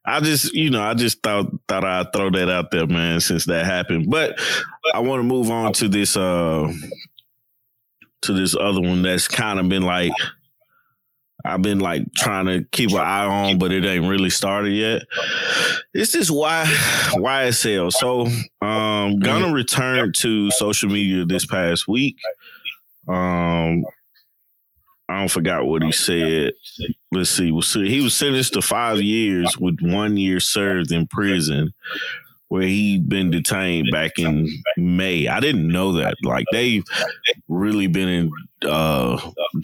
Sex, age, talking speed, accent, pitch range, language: male, 20-39, 160 wpm, American, 85-105 Hz, English